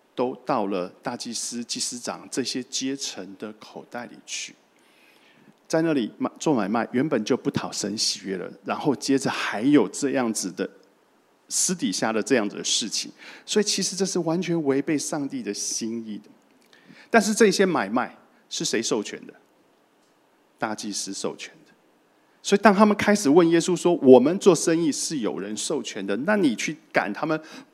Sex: male